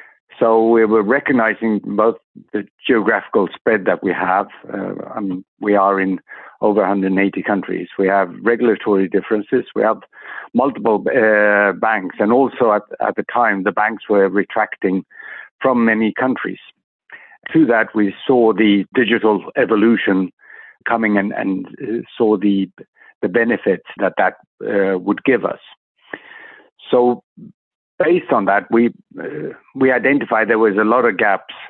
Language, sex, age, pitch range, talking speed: English, male, 60-79, 100-110 Hz, 140 wpm